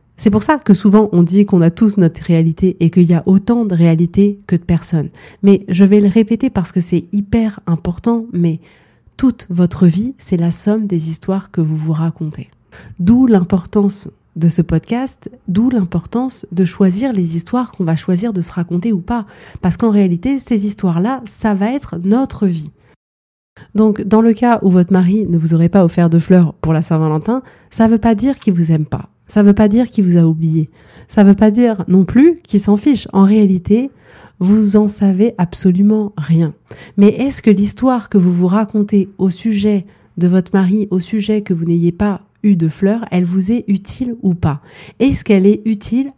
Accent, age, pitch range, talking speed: French, 30-49, 175-215 Hz, 205 wpm